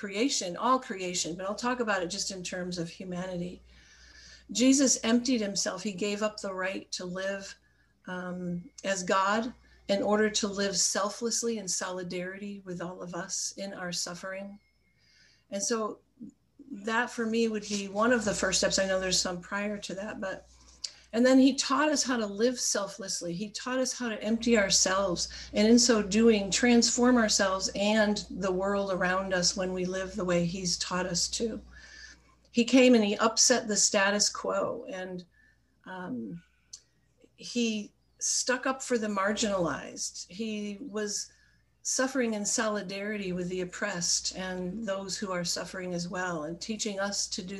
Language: English